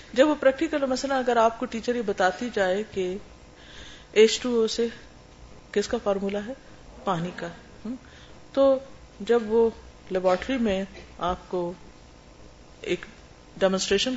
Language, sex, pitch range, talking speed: Urdu, female, 185-270 Hz, 125 wpm